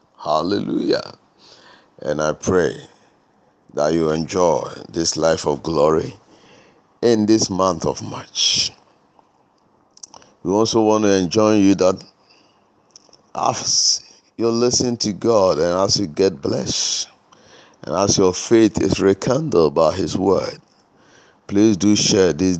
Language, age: English, 50-69